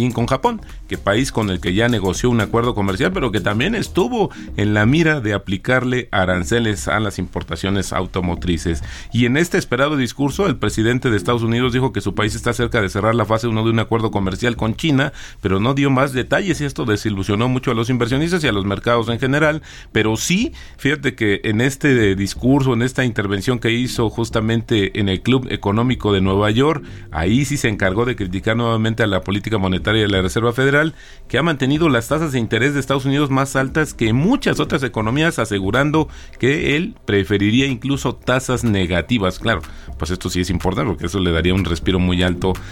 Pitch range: 95-125 Hz